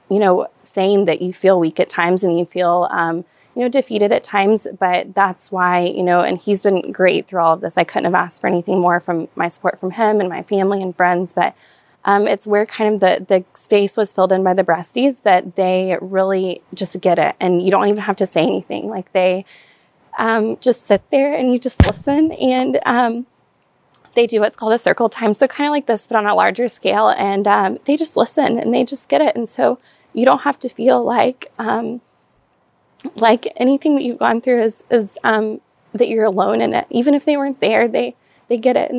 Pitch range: 190-240 Hz